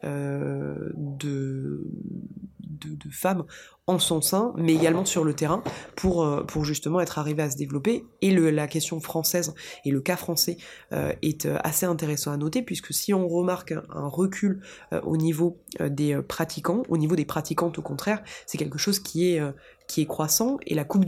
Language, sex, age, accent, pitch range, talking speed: French, female, 20-39, French, 150-180 Hz, 170 wpm